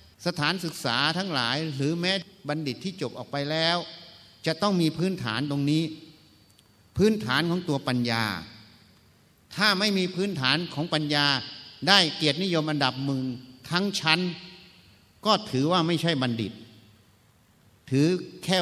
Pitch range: 120-170 Hz